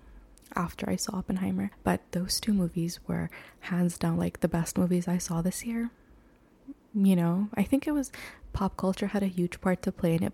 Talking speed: 205 wpm